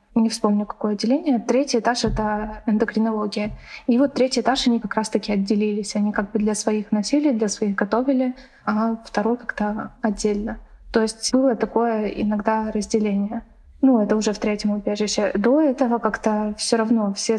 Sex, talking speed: female, 160 wpm